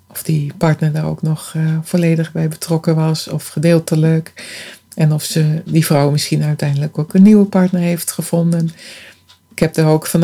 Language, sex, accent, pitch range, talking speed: Dutch, female, Dutch, 155-180 Hz, 180 wpm